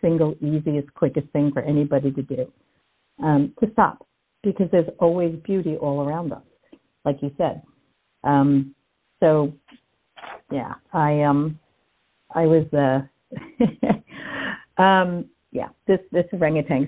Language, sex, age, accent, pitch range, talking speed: English, female, 50-69, American, 150-185 Hz, 120 wpm